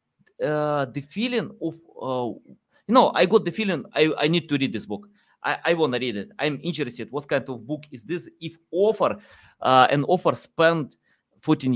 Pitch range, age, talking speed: 145-190 Hz, 30-49, 200 wpm